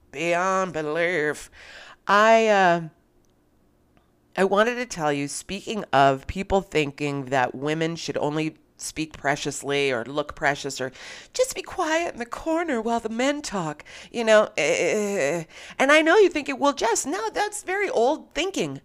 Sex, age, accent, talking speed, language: female, 30-49, American, 155 wpm, English